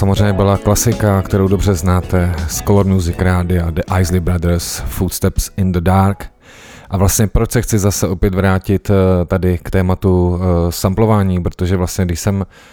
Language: Czech